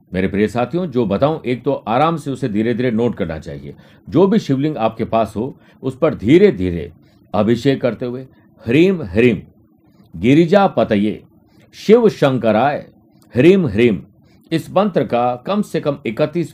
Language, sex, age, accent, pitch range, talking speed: Hindi, male, 50-69, native, 110-150 Hz, 155 wpm